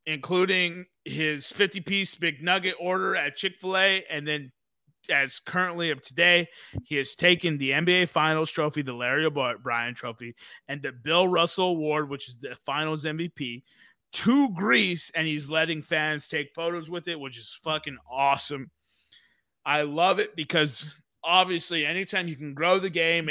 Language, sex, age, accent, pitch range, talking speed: English, male, 20-39, American, 135-180 Hz, 155 wpm